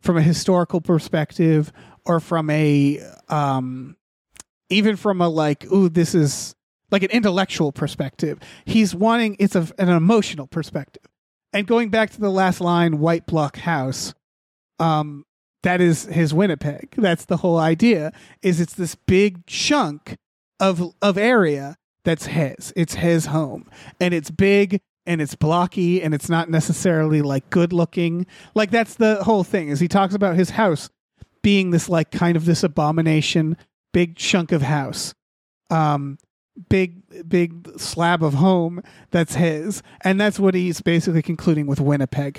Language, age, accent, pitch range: English, 30-49, American, 155-185 Hz